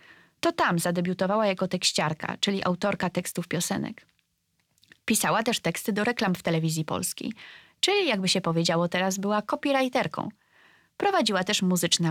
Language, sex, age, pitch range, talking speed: Polish, female, 20-39, 175-230 Hz, 135 wpm